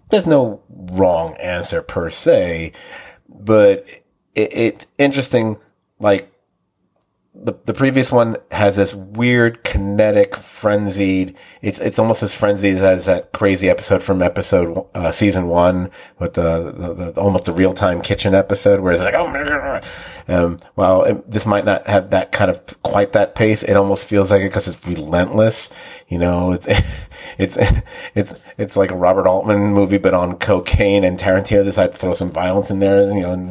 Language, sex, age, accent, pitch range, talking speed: English, male, 40-59, American, 95-115 Hz, 170 wpm